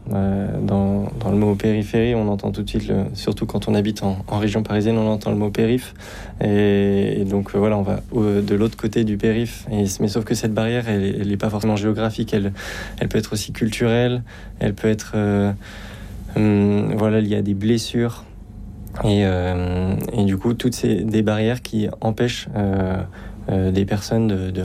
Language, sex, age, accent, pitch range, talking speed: French, male, 20-39, French, 100-110 Hz, 200 wpm